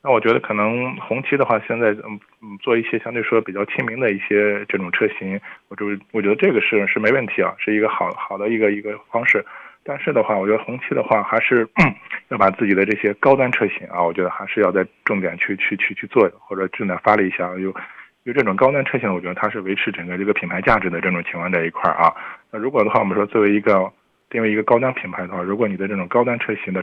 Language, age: Chinese, 20-39